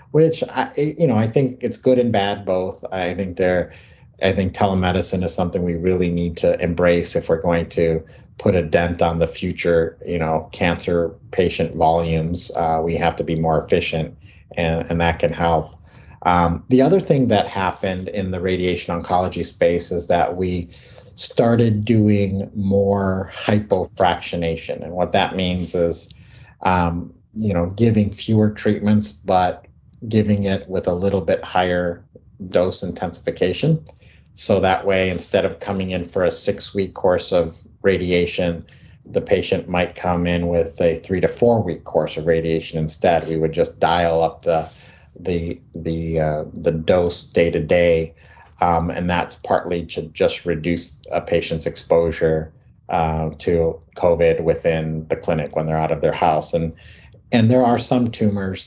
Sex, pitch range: male, 85-100 Hz